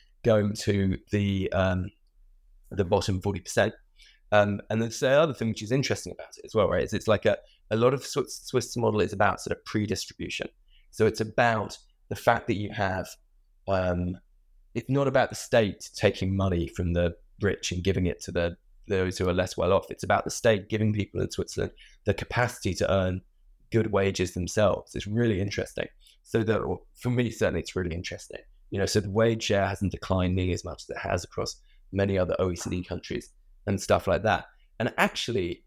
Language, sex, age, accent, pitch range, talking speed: English, male, 20-39, British, 90-110 Hz, 195 wpm